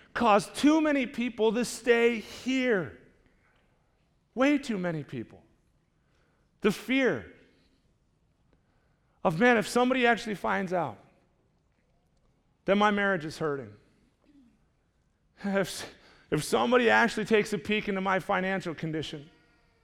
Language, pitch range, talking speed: English, 185-235 Hz, 110 wpm